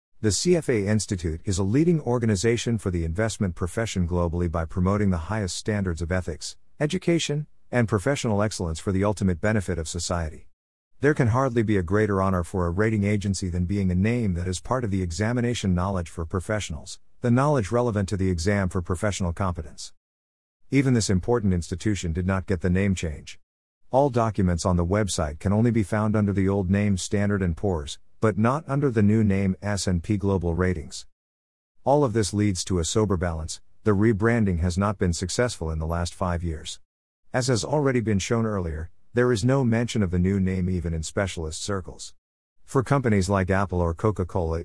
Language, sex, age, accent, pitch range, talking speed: English, male, 50-69, American, 90-110 Hz, 190 wpm